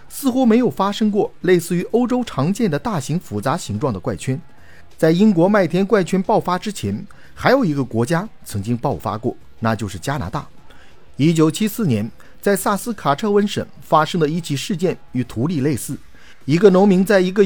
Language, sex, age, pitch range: Chinese, male, 50-69, 140-205 Hz